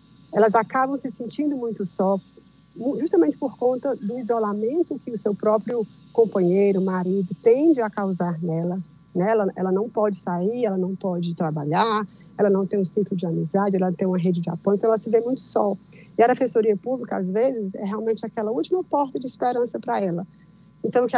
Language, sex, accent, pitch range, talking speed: Portuguese, female, Brazilian, 190-240 Hz, 195 wpm